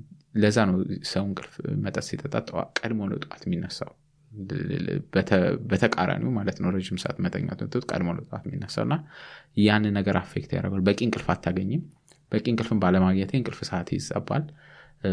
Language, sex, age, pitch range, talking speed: English, male, 20-39, 95-140 Hz, 45 wpm